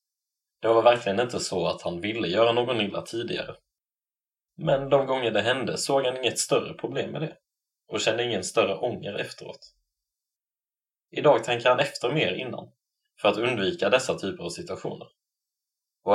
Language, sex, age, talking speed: Swedish, male, 20-39, 165 wpm